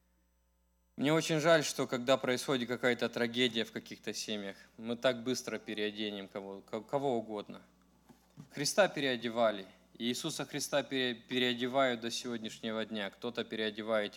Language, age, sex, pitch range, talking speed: English, 20-39, male, 105-135 Hz, 125 wpm